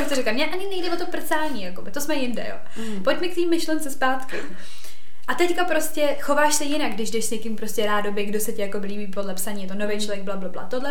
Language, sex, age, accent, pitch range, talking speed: Czech, female, 20-39, native, 205-250 Hz, 240 wpm